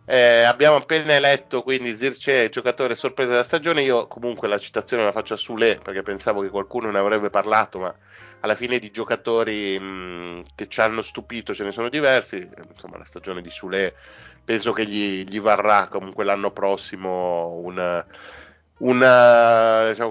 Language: Italian